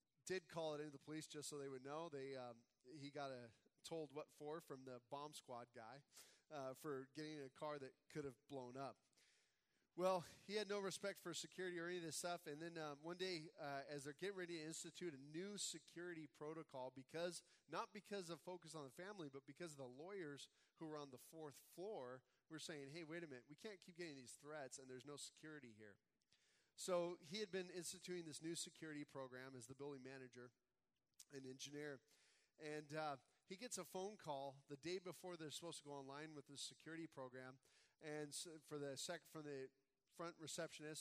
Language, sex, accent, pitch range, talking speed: English, male, American, 135-170 Hz, 205 wpm